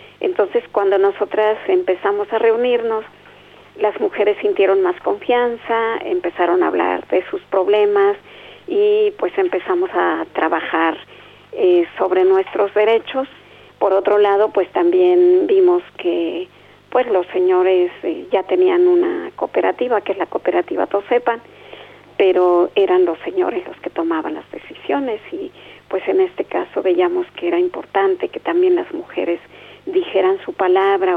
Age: 40-59